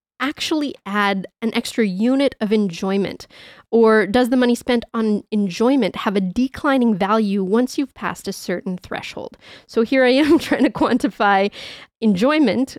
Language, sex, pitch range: English, female, 205-250 Hz